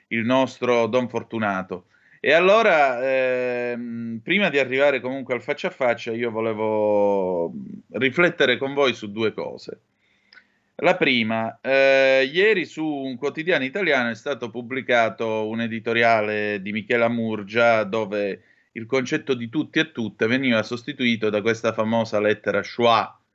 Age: 30-49